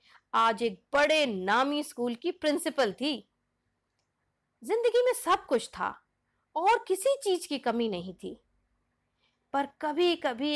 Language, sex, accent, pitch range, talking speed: Hindi, female, native, 250-360 Hz, 130 wpm